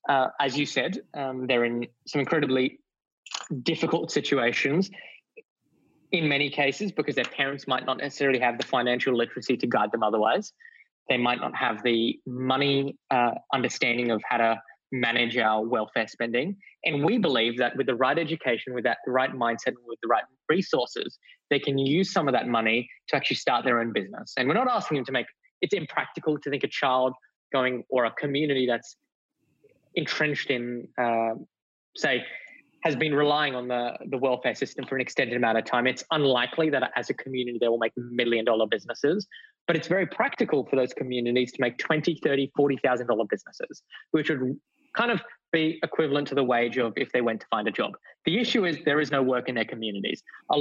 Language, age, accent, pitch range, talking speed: English, 20-39, Australian, 120-155 Hz, 190 wpm